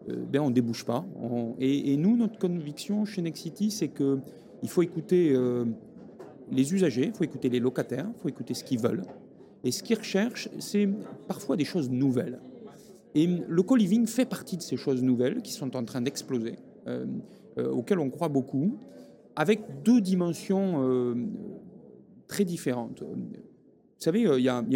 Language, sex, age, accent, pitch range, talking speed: French, male, 40-59, French, 130-210 Hz, 180 wpm